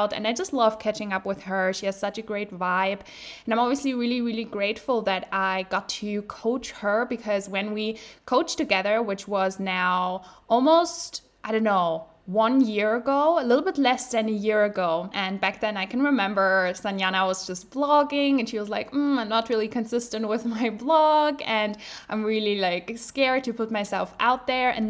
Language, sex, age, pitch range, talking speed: English, female, 10-29, 200-235 Hz, 200 wpm